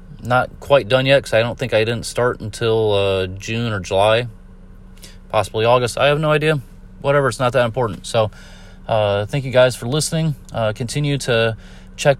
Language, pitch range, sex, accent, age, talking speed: English, 95-130 Hz, male, American, 30-49, 185 wpm